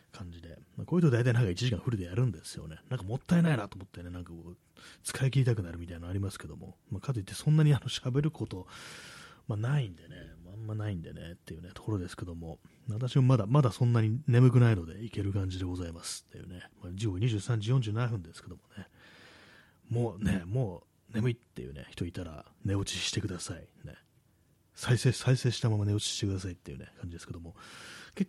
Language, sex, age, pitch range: Japanese, male, 30-49, 90-120 Hz